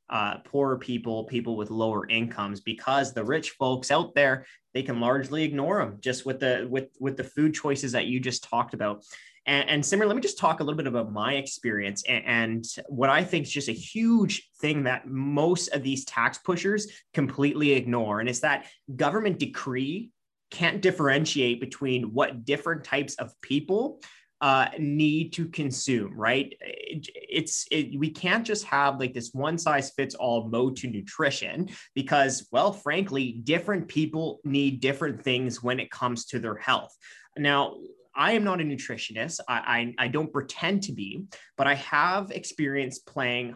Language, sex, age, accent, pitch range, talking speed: English, male, 20-39, American, 125-155 Hz, 175 wpm